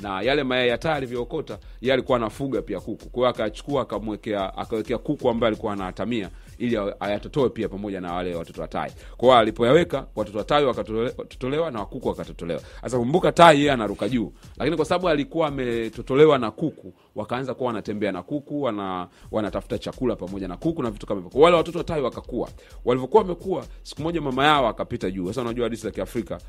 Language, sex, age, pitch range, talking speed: Swahili, male, 40-59, 110-160 Hz, 180 wpm